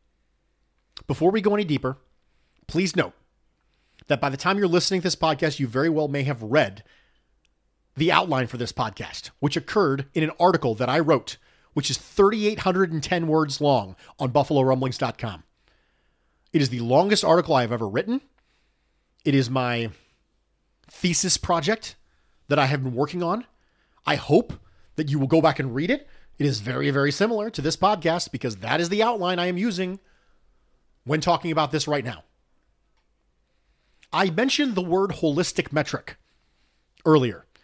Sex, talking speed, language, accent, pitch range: male, 160 wpm, English, American, 135-200 Hz